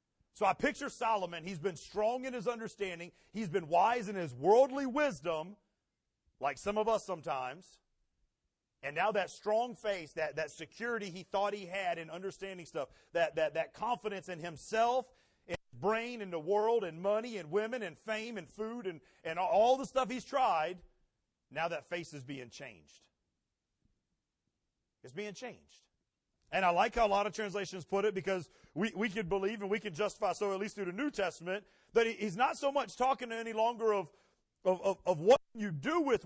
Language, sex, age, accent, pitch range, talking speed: English, male, 40-59, American, 175-225 Hz, 190 wpm